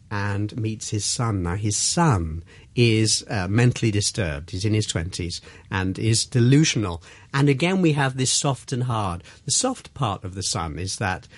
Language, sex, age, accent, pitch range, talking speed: English, male, 50-69, British, 100-135 Hz, 180 wpm